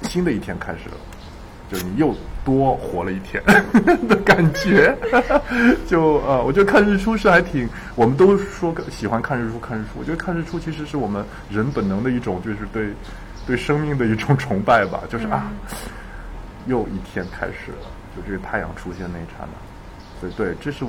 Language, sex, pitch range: Chinese, male, 95-145 Hz